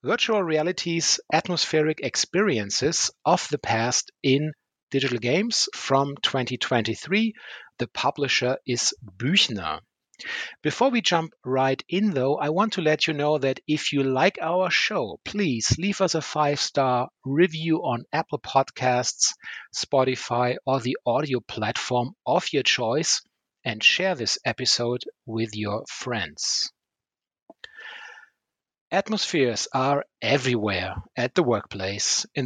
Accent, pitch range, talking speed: German, 120-160 Hz, 120 wpm